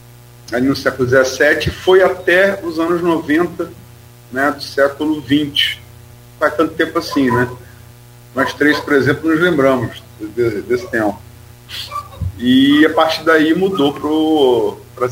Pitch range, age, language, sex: 120-155 Hz, 40-59, Portuguese, male